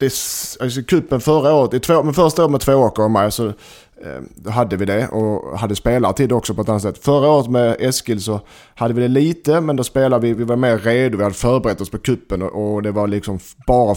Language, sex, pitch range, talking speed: Swedish, male, 105-130 Hz, 250 wpm